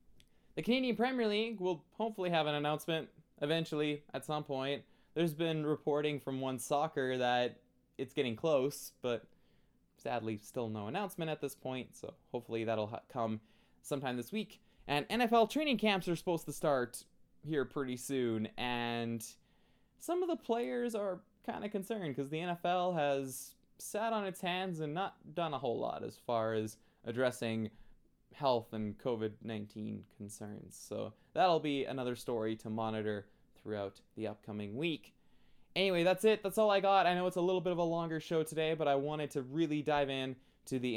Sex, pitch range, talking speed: male, 120-165 Hz, 175 wpm